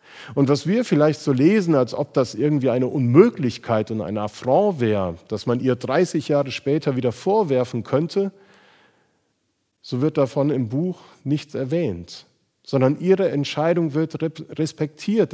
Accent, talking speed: German, 145 wpm